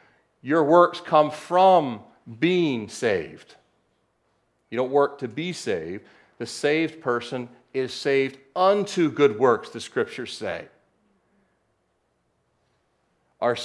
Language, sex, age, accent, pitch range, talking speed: English, male, 40-59, American, 105-155 Hz, 105 wpm